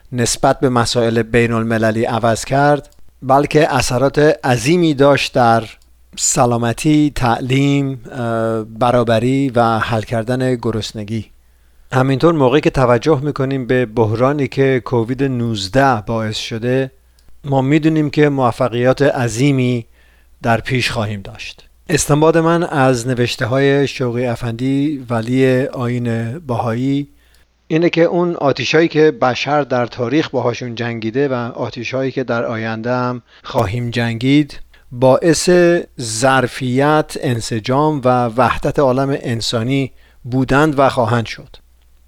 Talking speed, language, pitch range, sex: 115 wpm, Persian, 115-140 Hz, male